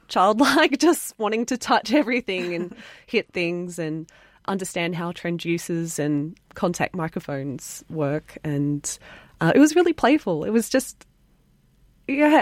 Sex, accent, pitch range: female, Australian, 160-200 Hz